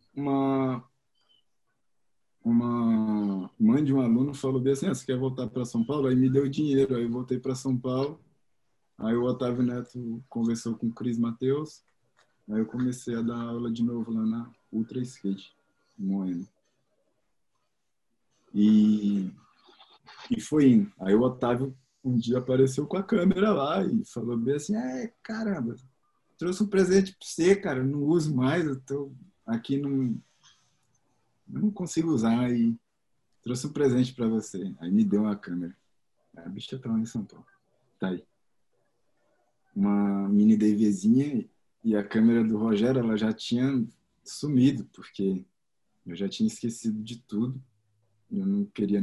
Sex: male